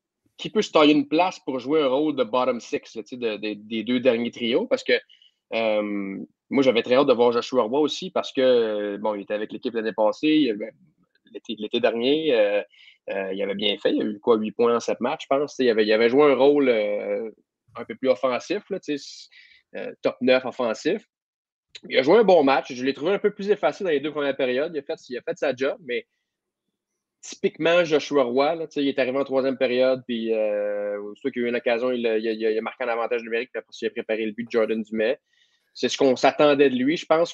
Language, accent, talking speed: French, Canadian, 245 wpm